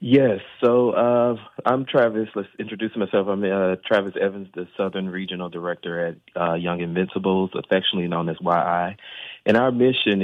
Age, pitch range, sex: 30-49, 90-105 Hz, male